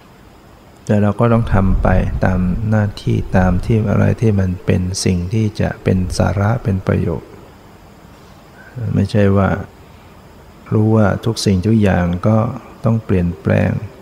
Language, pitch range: Thai, 95-110 Hz